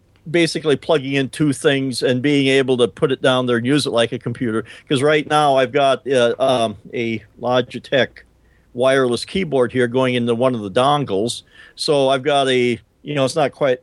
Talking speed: 200 wpm